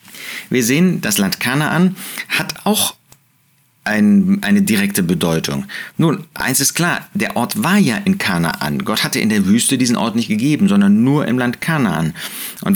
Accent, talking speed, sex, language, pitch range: German, 165 wpm, male, German, 130-200 Hz